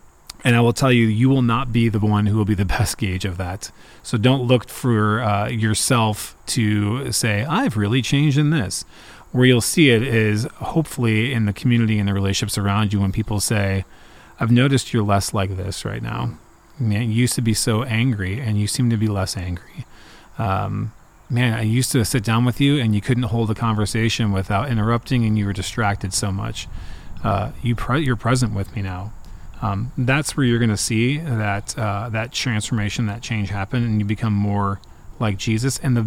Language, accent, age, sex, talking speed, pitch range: English, American, 30-49, male, 205 wpm, 100-120 Hz